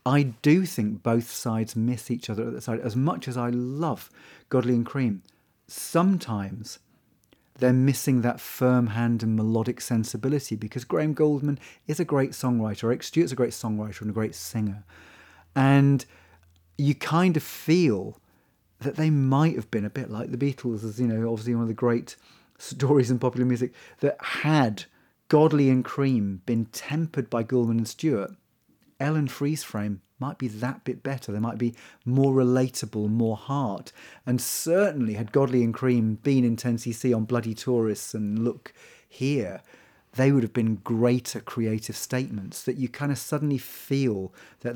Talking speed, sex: 170 wpm, male